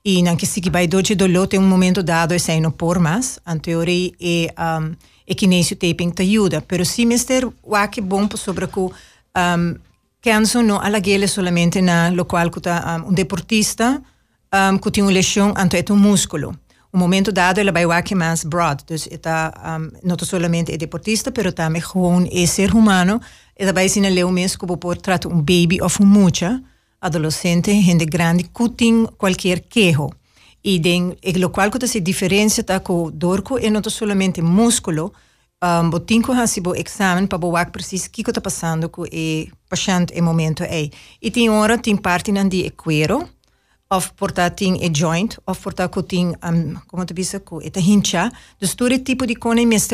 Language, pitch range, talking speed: English, 170-205 Hz, 155 wpm